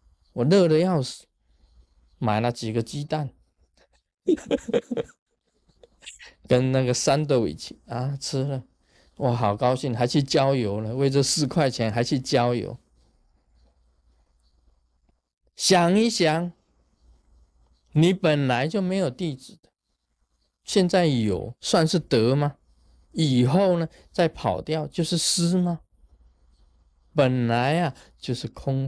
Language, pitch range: Chinese, 100-165 Hz